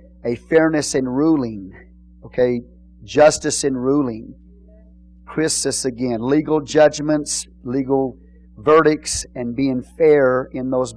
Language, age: English, 40-59